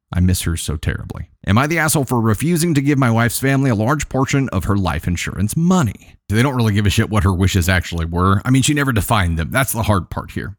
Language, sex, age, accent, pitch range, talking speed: English, male, 30-49, American, 95-125 Hz, 260 wpm